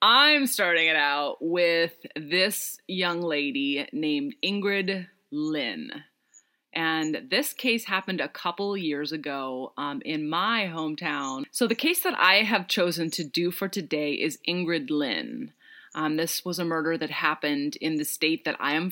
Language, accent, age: English, American, 30-49